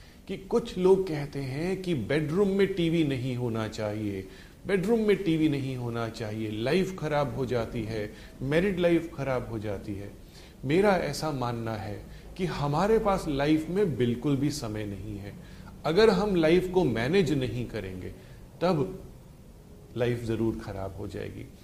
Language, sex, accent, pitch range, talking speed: Hindi, male, native, 115-190 Hz, 155 wpm